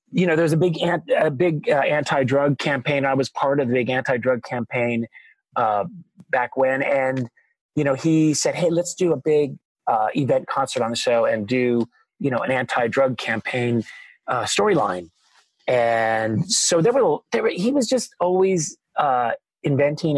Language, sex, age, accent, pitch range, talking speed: English, male, 30-49, American, 125-180 Hz, 175 wpm